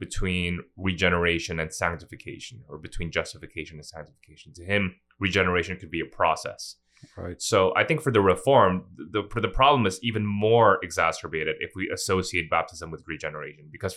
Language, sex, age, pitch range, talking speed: English, male, 20-39, 85-100 Hz, 160 wpm